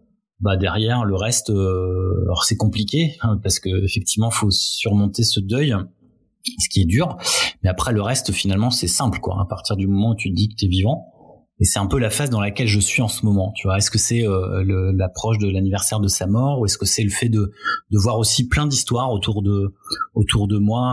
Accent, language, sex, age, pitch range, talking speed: French, French, male, 30-49, 100-120 Hz, 240 wpm